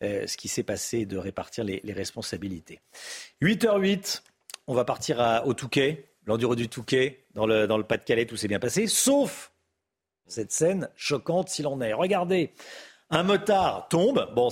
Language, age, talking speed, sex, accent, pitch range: French, 50-69, 170 wpm, male, French, 110-180 Hz